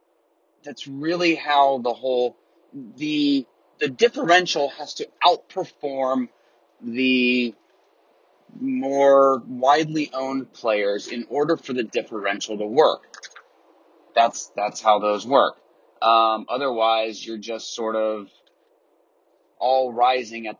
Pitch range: 115-155 Hz